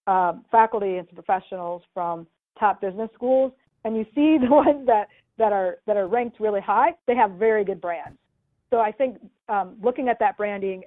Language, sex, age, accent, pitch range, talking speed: English, female, 40-59, American, 190-235 Hz, 195 wpm